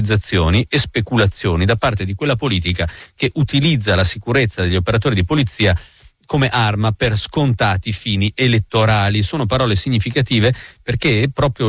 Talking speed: 135 wpm